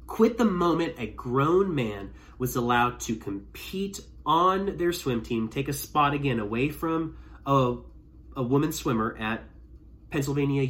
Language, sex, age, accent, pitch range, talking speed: English, male, 30-49, American, 110-140 Hz, 145 wpm